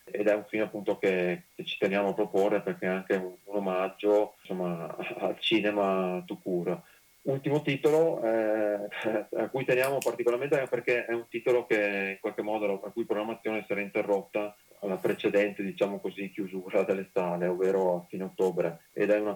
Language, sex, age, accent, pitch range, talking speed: Italian, male, 30-49, native, 95-105 Hz, 175 wpm